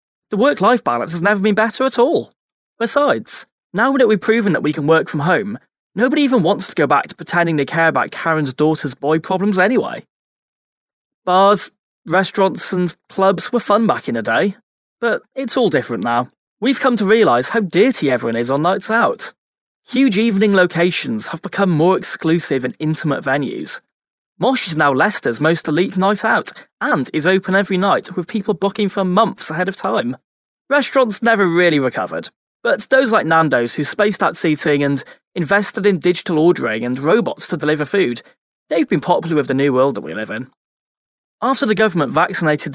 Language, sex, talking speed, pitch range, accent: English, male, 180 wpm, 155-220 Hz, British